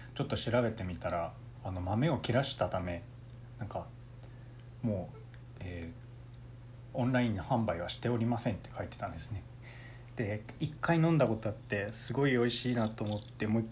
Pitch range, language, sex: 110-125 Hz, Japanese, male